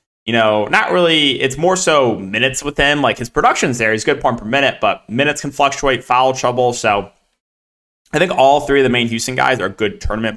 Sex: male